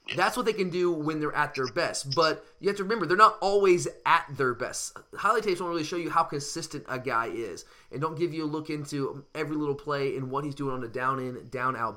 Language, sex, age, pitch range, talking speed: English, male, 20-39, 140-200 Hz, 260 wpm